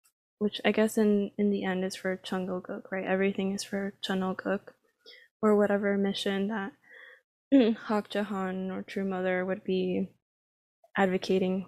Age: 20-39